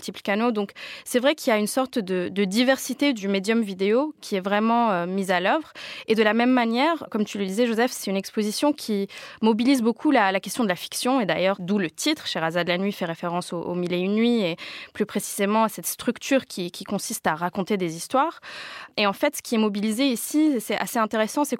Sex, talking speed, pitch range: female, 240 wpm, 195-255 Hz